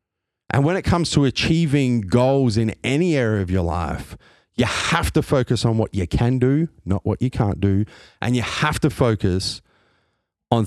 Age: 30-49